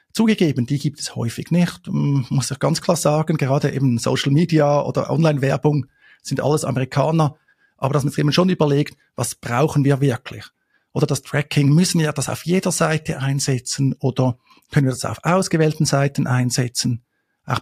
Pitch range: 135-165 Hz